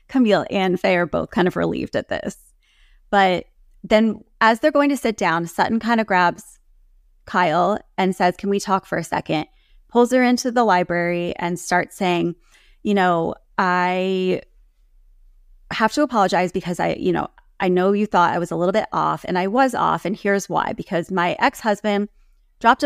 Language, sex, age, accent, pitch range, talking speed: English, female, 20-39, American, 175-215 Hz, 185 wpm